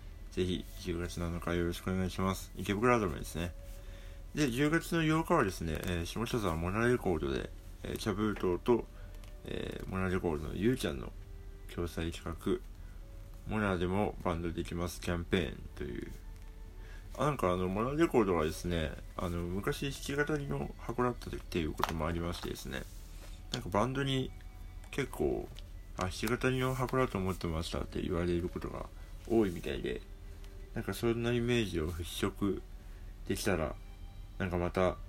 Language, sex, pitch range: Japanese, male, 85-100 Hz